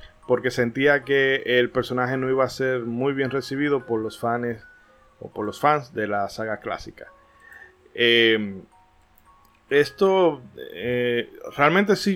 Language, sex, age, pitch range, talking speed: Spanish, male, 20-39, 110-135 Hz, 140 wpm